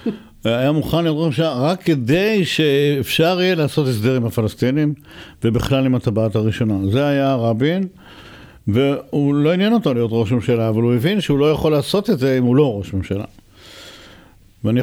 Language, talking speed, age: Hebrew, 165 wpm, 60-79